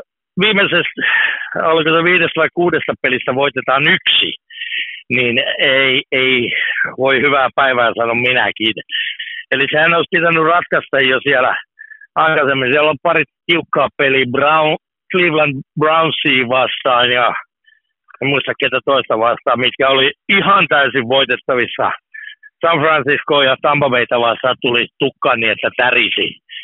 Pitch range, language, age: 135-190 Hz, Finnish, 60-79